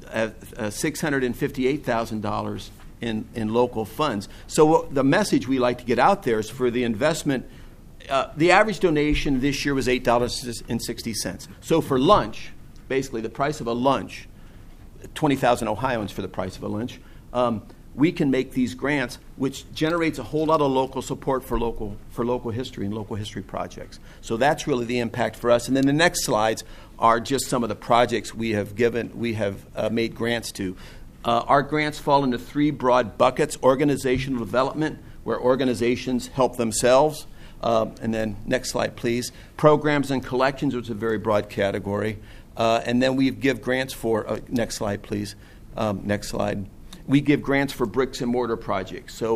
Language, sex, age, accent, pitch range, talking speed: English, male, 50-69, American, 110-130 Hz, 180 wpm